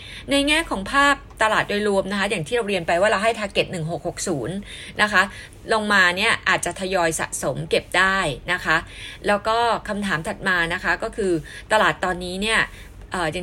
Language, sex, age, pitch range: Thai, female, 20-39, 175-225 Hz